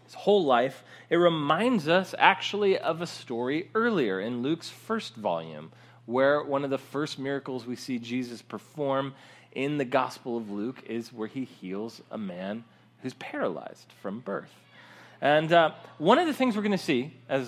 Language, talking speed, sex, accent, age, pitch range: English, 170 wpm, male, American, 30-49, 115-165 Hz